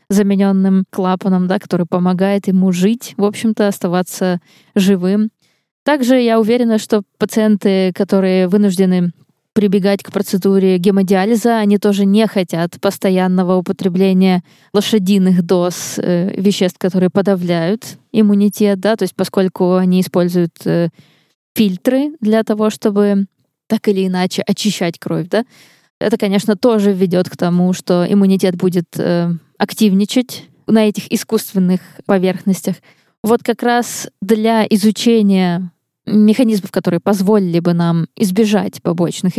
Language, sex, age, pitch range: Russian, female, 20-39, 180-210 Hz